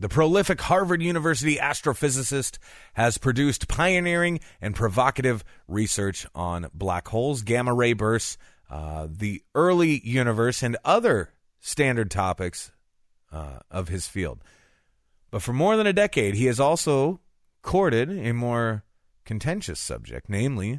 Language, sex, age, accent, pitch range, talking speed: English, male, 30-49, American, 95-135 Hz, 125 wpm